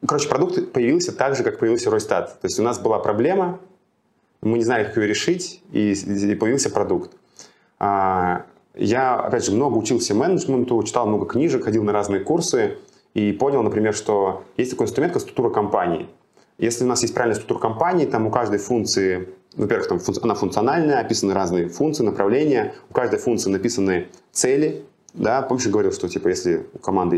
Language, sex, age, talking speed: Russian, male, 20-39, 175 wpm